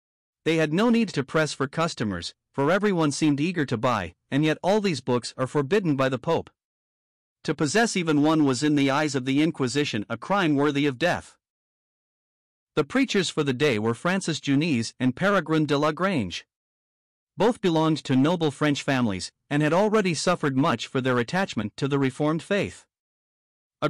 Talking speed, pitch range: 180 wpm, 130-170 Hz